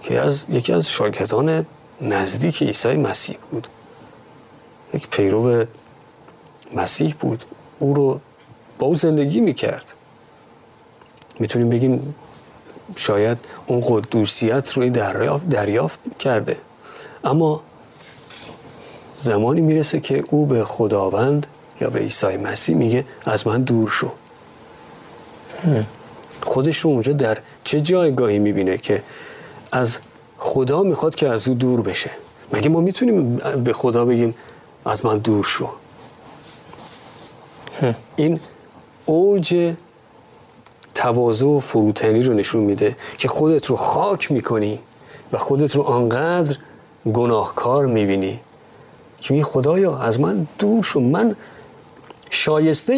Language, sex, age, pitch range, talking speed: Persian, male, 40-59, 115-155 Hz, 115 wpm